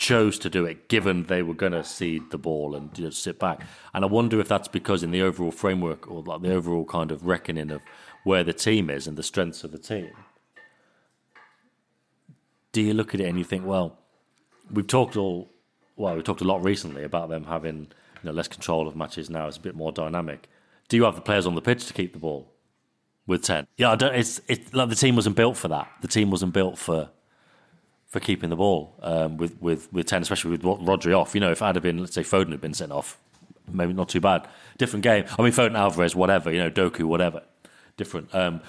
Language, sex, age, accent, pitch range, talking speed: English, male, 30-49, British, 85-100 Hz, 235 wpm